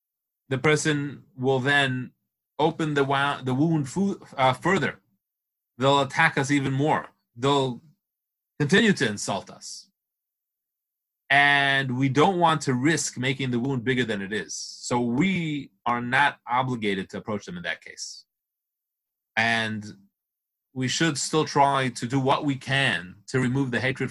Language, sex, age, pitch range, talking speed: English, male, 30-49, 125-155 Hz, 140 wpm